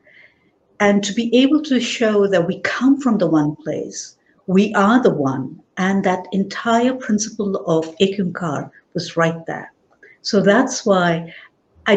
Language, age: English, 60-79